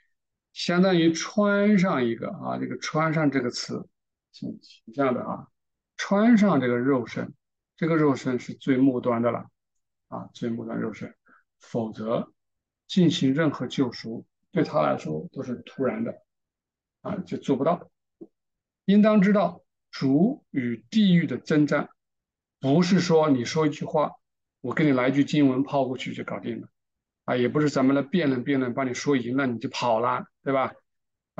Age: 50-69